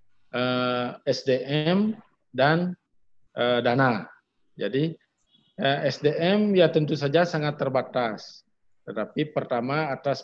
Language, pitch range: Indonesian, 120-150 Hz